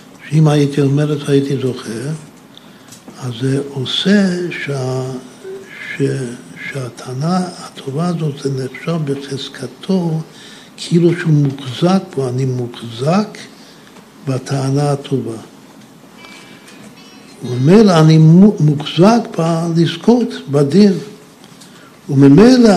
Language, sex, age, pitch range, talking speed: Hebrew, male, 60-79, 130-170 Hz, 75 wpm